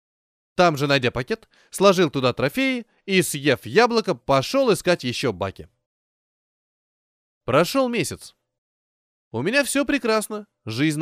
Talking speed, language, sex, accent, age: 115 wpm, Russian, male, native, 20-39